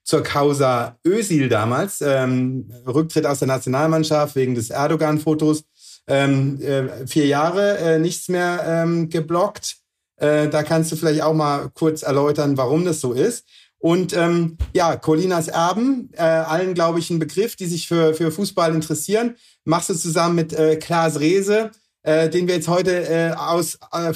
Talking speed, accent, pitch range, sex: 165 wpm, German, 155-180 Hz, male